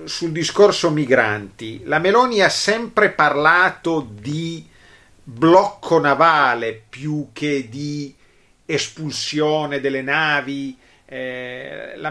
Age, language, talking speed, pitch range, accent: 40-59, Italian, 95 wpm, 120-155 Hz, native